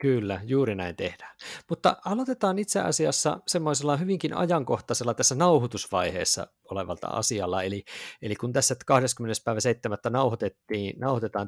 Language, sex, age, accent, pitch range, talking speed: Finnish, male, 50-69, native, 105-140 Hz, 120 wpm